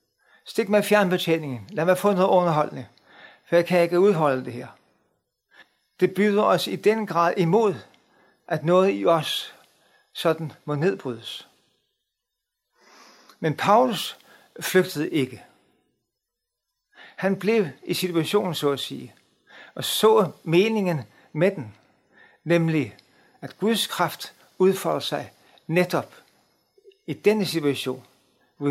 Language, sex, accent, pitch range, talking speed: Danish, male, native, 145-190 Hz, 115 wpm